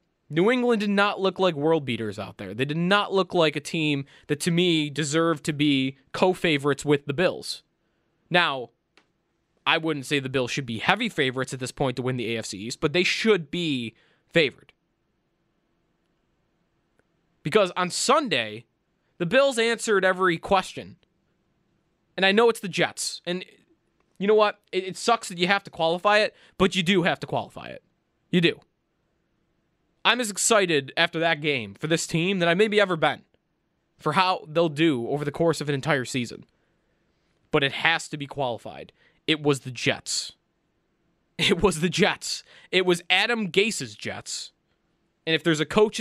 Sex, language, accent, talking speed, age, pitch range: male, English, American, 175 wpm, 20-39, 150-195 Hz